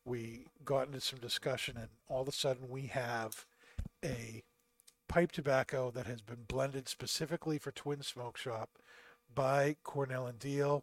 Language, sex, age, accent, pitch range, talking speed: English, male, 50-69, American, 120-145 Hz, 155 wpm